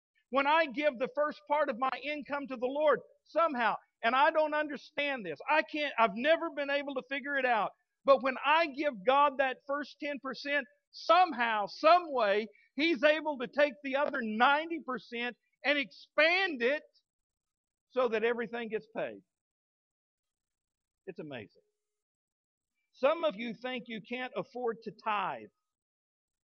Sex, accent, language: male, American, English